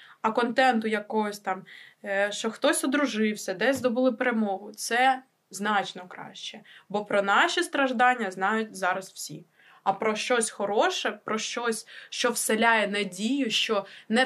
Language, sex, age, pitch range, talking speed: Ukrainian, female, 20-39, 200-250 Hz, 130 wpm